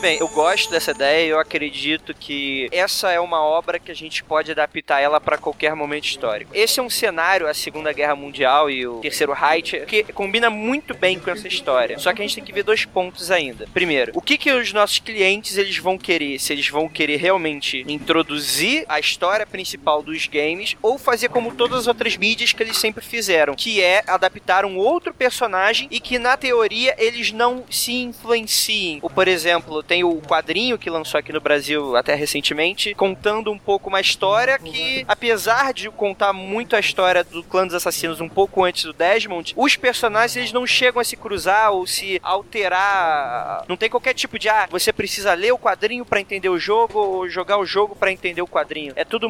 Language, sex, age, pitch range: Portuguese, male, 20-39, 165-230 Hz